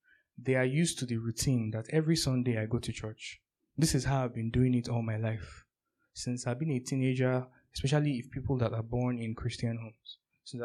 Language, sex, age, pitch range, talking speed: English, male, 20-39, 115-135 Hz, 215 wpm